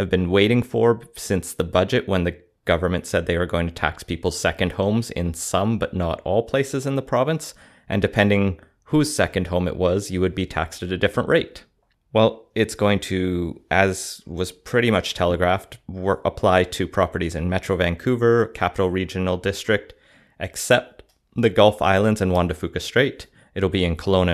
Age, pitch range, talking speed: 30-49, 90-105 Hz, 185 wpm